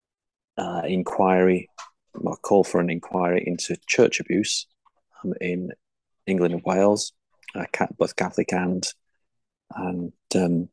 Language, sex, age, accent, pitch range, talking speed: English, male, 30-49, British, 90-100 Hz, 115 wpm